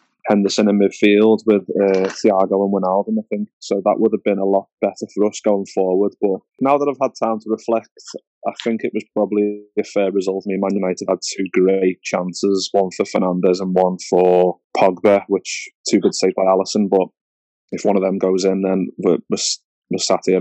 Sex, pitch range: male, 95-110 Hz